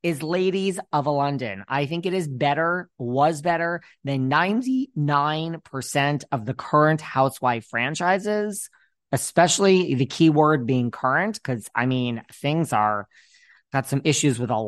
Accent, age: American, 20-39